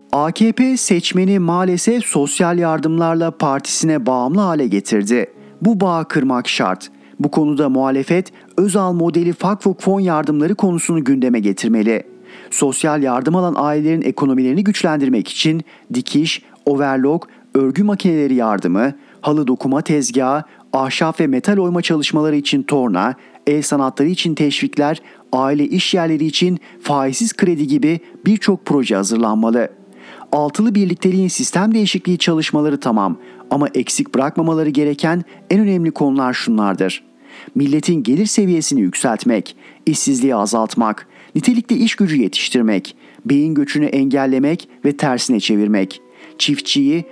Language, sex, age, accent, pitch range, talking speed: Turkish, male, 40-59, native, 135-185 Hz, 115 wpm